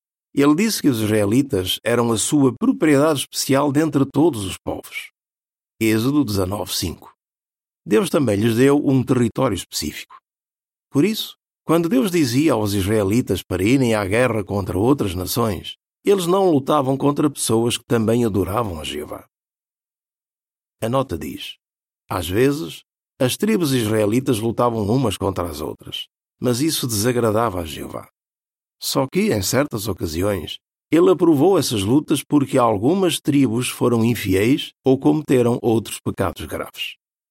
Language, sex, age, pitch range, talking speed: Portuguese, male, 50-69, 105-140 Hz, 135 wpm